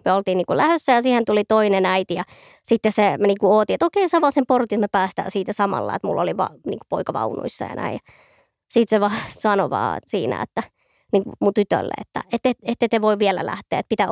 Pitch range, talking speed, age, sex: 200-255 Hz, 210 wpm, 20-39, male